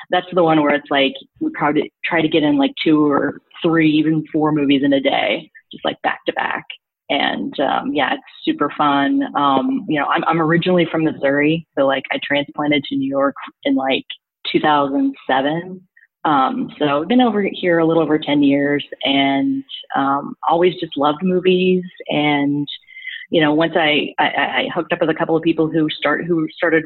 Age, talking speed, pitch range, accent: 30-49, 190 wpm, 145-185 Hz, American